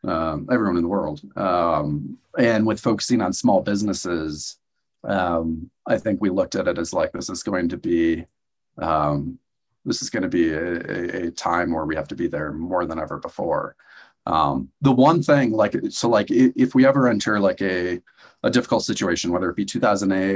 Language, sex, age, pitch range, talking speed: English, male, 40-59, 85-110 Hz, 190 wpm